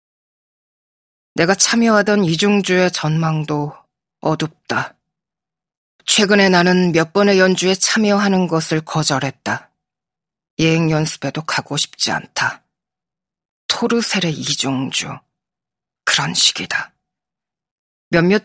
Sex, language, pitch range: female, Korean, 145-185 Hz